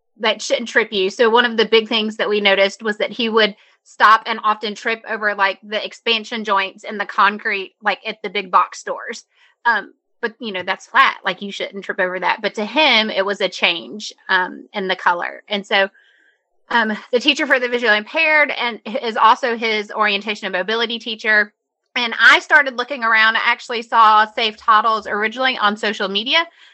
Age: 30-49